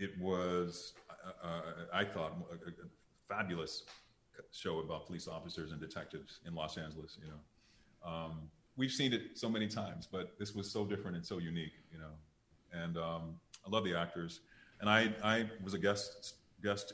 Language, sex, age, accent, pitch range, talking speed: English, male, 30-49, American, 85-100 Hz, 175 wpm